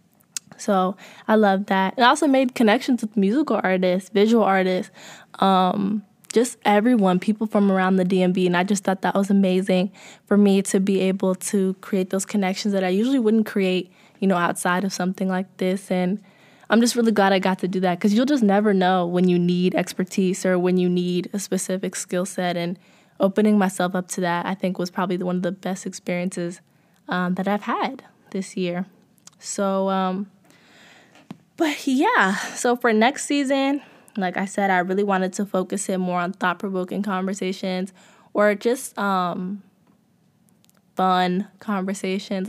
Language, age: English, 20-39